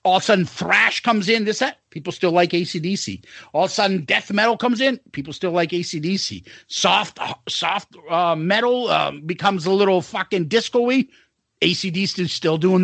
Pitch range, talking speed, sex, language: 175-255 Hz, 185 wpm, male, English